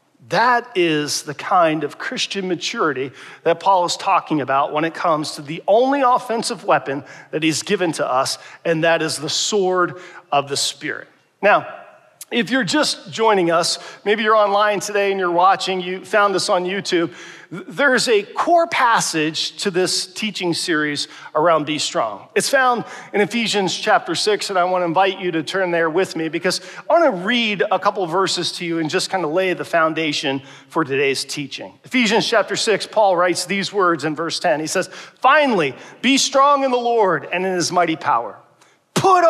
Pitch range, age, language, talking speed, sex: 165-225 Hz, 40-59, English, 190 wpm, male